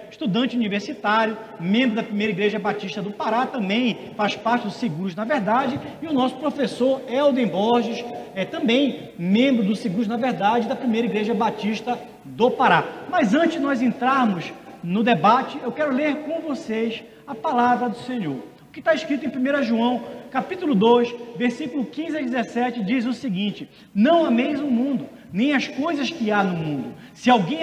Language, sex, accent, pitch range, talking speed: Portuguese, male, Brazilian, 210-255 Hz, 175 wpm